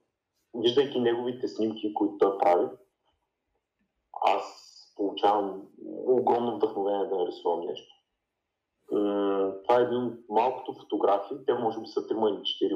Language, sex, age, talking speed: Bulgarian, male, 30-49, 120 wpm